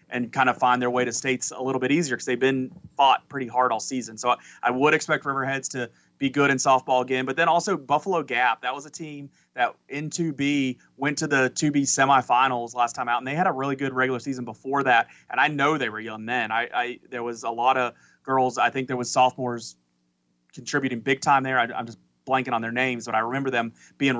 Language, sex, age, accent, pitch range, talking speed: English, male, 30-49, American, 125-140 Hz, 235 wpm